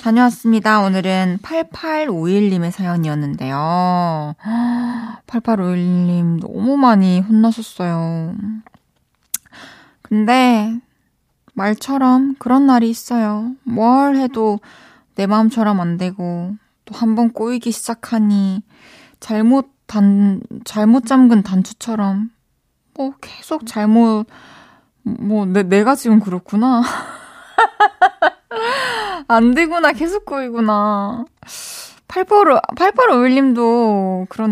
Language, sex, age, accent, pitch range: Korean, female, 20-39, native, 190-255 Hz